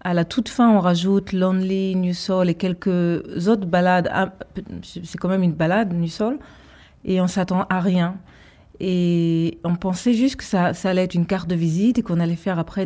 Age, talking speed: 30-49, 205 wpm